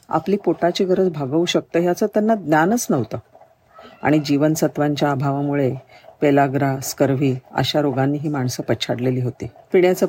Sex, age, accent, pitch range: female, 40-59, native, 130-165 Hz